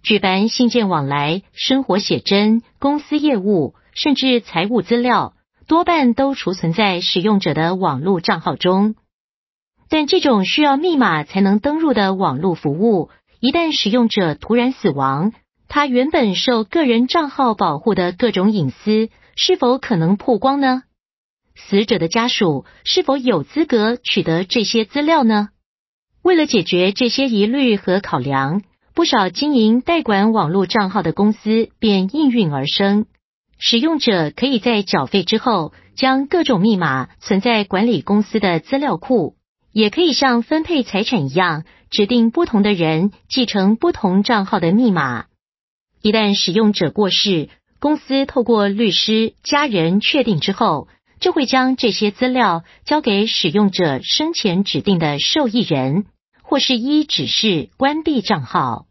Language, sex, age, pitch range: Vietnamese, female, 50-69, 190-260 Hz